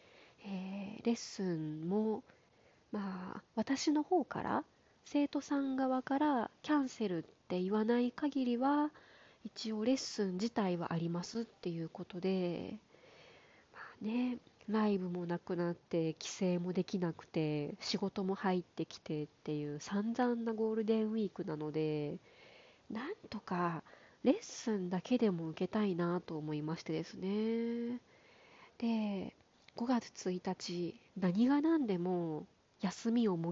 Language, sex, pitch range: Japanese, female, 180-240 Hz